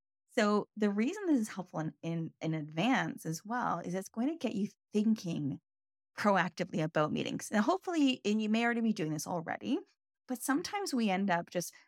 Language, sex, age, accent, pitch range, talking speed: English, female, 20-39, American, 165-235 Hz, 190 wpm